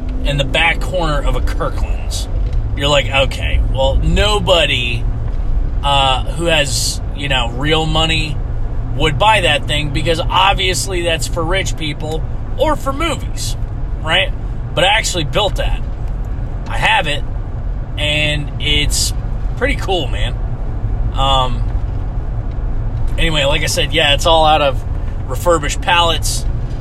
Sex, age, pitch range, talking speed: male, 30-49, 105-130 Hz, 130 wpm